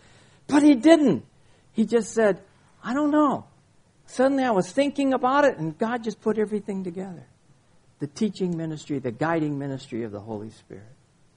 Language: English